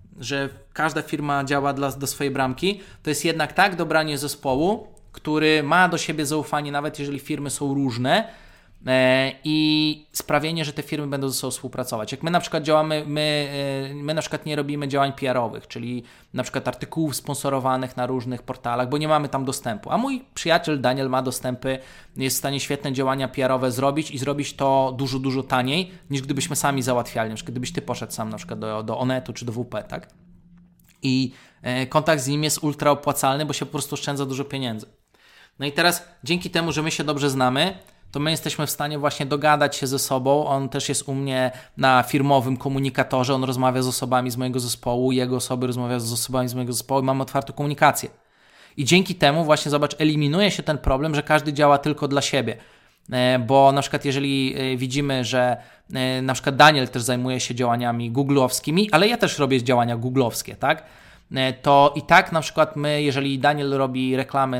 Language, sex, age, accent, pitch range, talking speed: Polish, male, 20-39, native, 130-150 Hz, 185 wpm